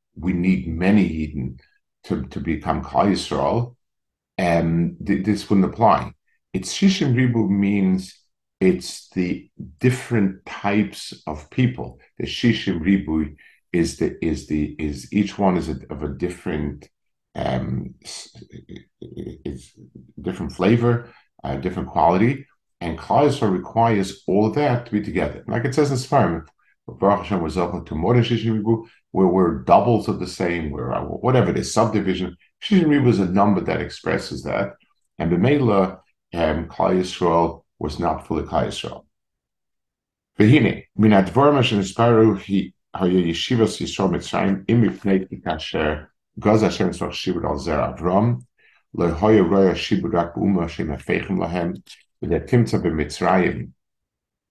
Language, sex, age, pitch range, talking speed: English, male, 50-69, 85-115 Hz, 130 wpm